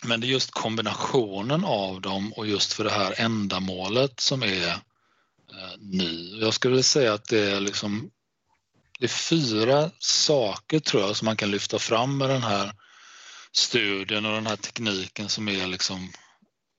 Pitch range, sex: 95-115 Hz, male